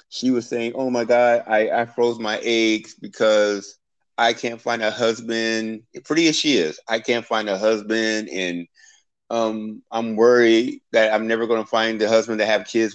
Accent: American